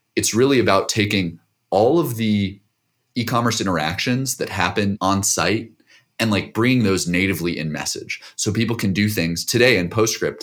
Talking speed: 160 wpm